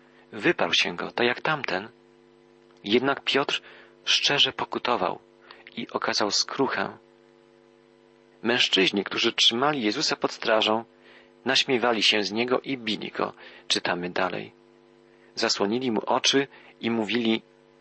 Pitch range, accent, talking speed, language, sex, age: 90-120 Hz, native, 115 wpm, Polish, male, 40-59